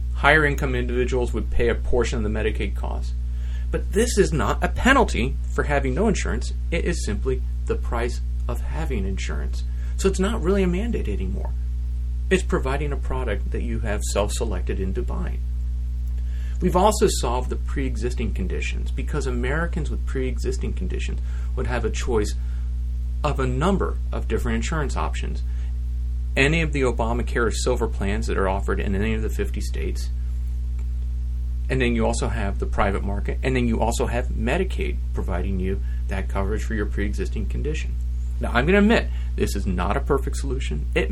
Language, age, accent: English, 40-59, American